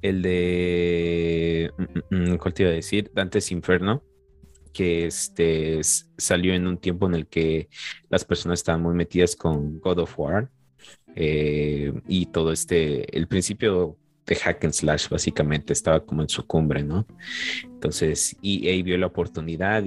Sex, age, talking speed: male, 30-49, 150 wpm